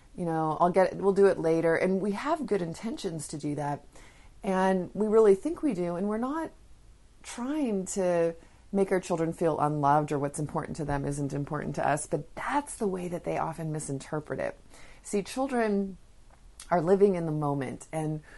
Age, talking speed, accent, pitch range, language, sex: 30-49, 195 wpm, American, 155-200 Hz, English, female